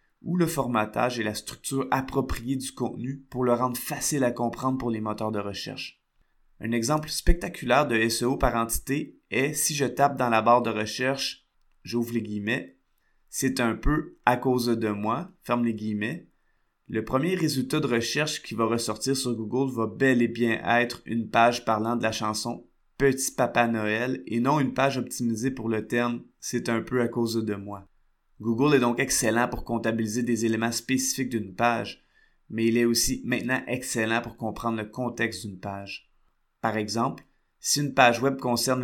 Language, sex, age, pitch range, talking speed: French, male, 20-39, 115-130 Hz, 195 wpm